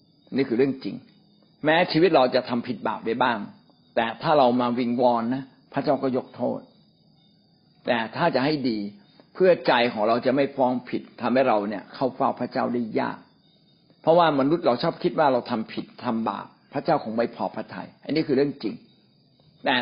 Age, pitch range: 60-79, 125-160 Hz